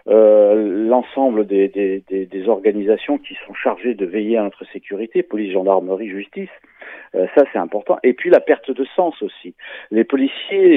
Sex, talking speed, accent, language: male, 175 wpm, French, Italian